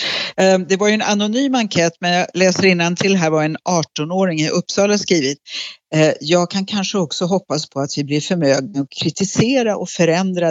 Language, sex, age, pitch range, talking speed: Swedish, female, 60-79, 145-185 Hz, 185 wpm